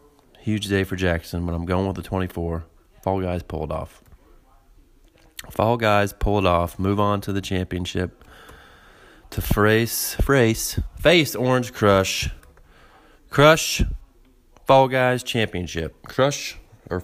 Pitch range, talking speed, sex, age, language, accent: 95-130 Hz, 125 wpm, male, 30-49, English, American